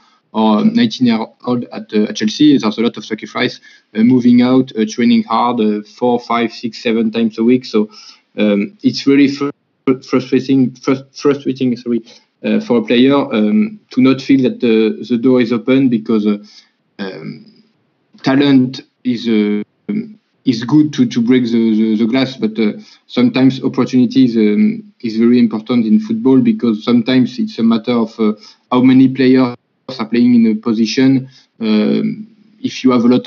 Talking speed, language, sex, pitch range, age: 175 wpm, English, male, 115-150 Hz, 20-39